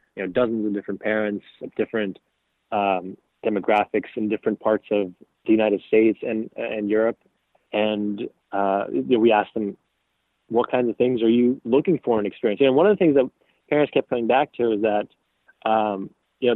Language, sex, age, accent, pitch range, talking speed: English, male, 20-39, American, 105-125 Hz, 190 wpm